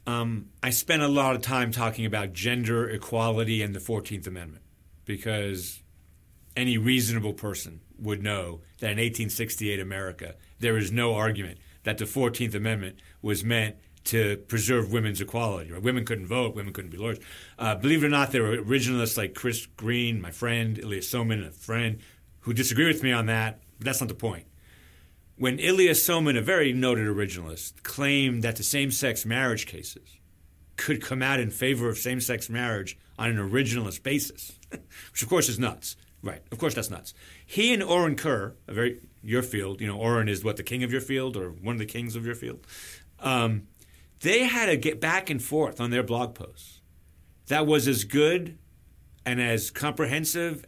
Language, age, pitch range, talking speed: English, 40-59, 95-125 Hz, 180 wpm